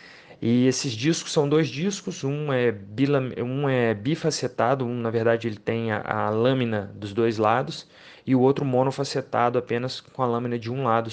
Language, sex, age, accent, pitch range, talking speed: Portuguese, male, 20-39, Brazilian, 110-130 Hz, 185 wpm